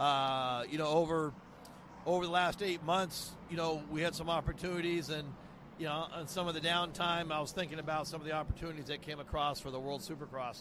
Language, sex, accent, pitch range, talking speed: English, male, American, 145-170 Hz, 215 wpm